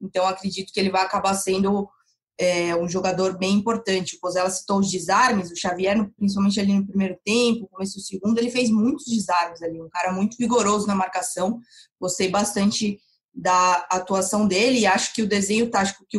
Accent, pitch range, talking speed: Brazilian, 185-220 Hz, 185 wpm